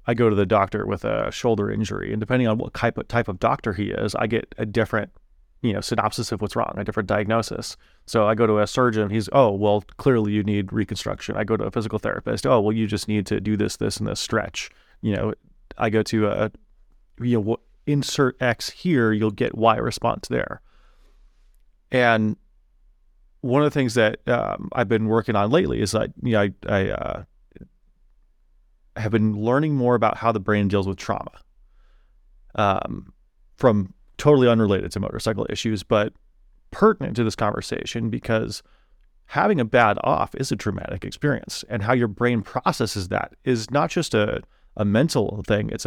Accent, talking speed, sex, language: American, 190 wpm, male, English